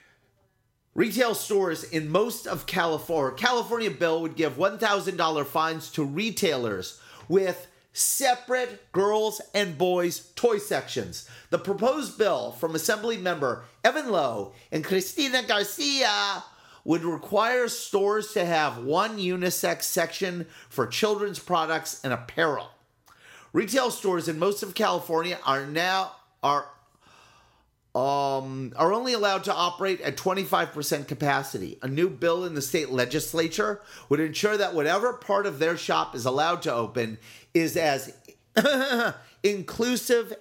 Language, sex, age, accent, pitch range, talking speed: English, male, 40-59, American, 150-205 Hz, 125 wpm